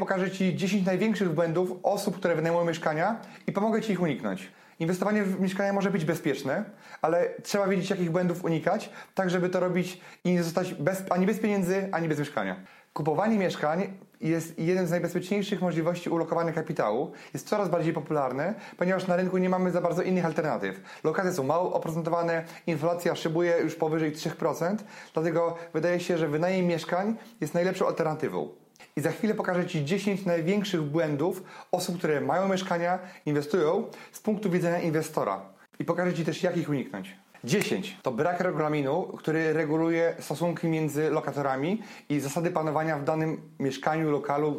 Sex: male